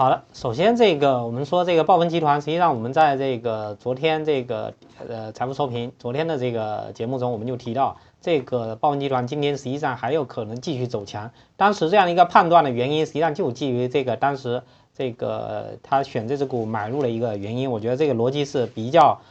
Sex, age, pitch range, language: male, 20-39, 120-150 Hz, Chinese